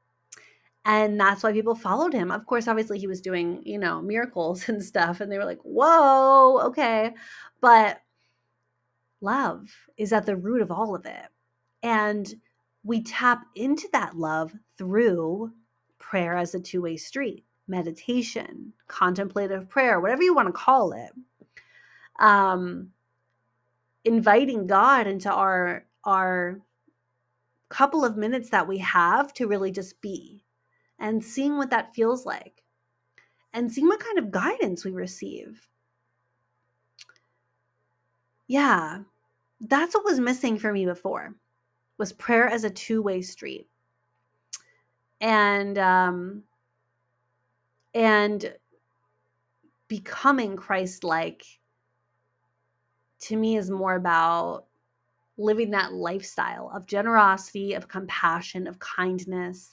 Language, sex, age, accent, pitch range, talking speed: English, female, 30-49, American, 185-230 Hz, 120 wpm